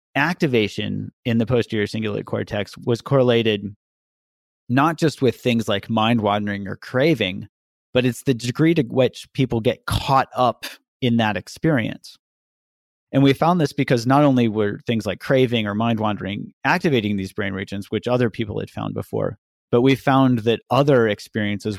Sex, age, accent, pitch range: male, 30-49, American, 105-125 Hz